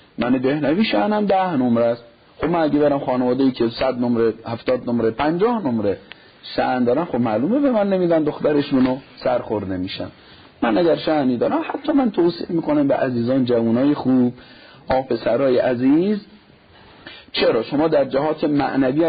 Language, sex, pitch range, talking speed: Persian, male, 130-200 Hz, 155 wpm